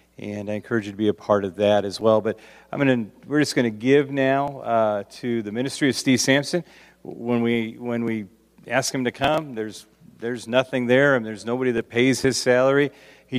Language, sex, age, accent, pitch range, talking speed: English, male, 40-59, American, 110-135 Hz, 215 wpm